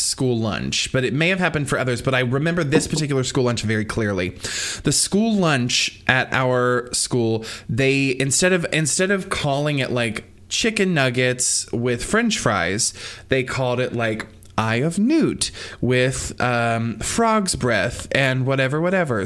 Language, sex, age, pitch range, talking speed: English, male, 20-39, 110-140 Hz, 160 wpm